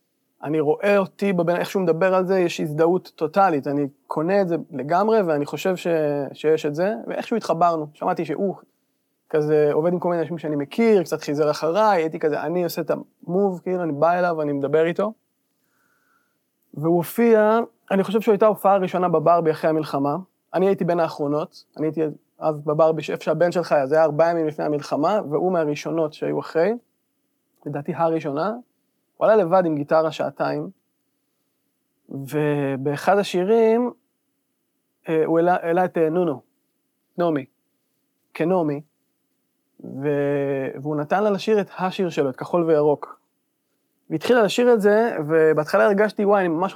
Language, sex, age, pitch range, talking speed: English, male, 20-39, 155-200 Hz, 110 wpm